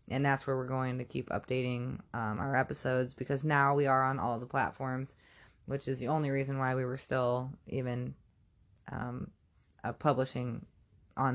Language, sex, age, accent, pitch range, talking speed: English, female, 20-39, American, 125-155 Hz, 175 wpm